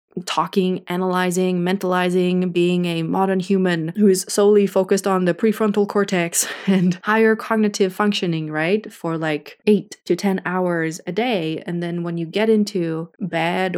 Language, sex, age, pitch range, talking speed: English, female, 20-39, 170-205 Hz, 150 wpm